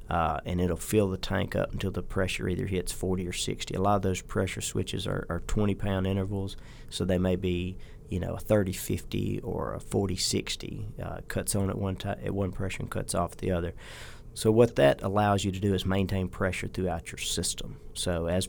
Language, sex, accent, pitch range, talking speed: English, male, American, 90-100 Hz, 225 wpm